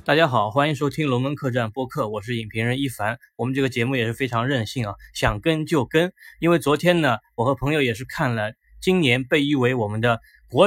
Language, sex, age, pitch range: Chinese, male, 20-39, 120-155 Hz